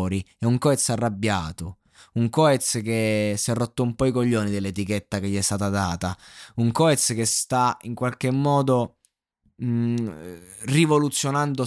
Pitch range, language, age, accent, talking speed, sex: 100-125 Hz, Italian, 20-39, native, 145 wpm, male